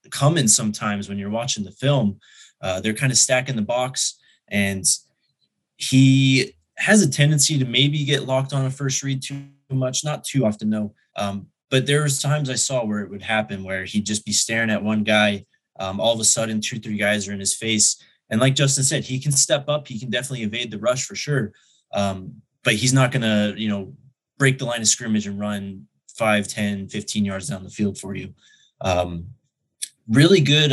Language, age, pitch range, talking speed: English, 20-39, 105-135 Hz, 210 wpm